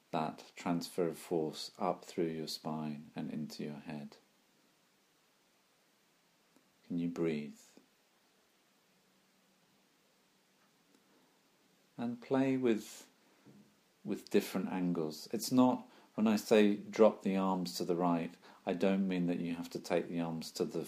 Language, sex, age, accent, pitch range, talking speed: English, male, 40-59, British, 80-100 Hz, 125 wpm